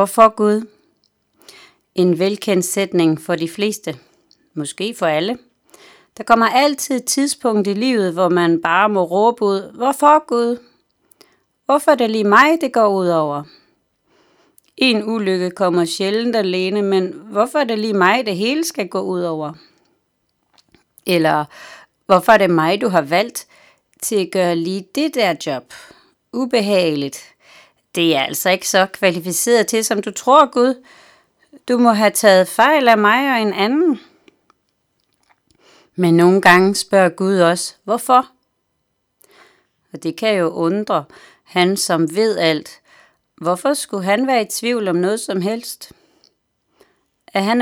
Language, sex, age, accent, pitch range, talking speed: Danish, female, 30-49, native, 185-245 Hz, 145 wpm